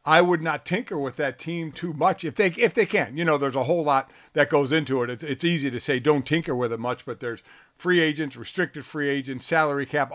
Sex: male